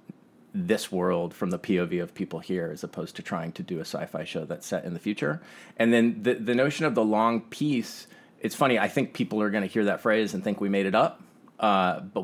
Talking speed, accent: 245 wpm, American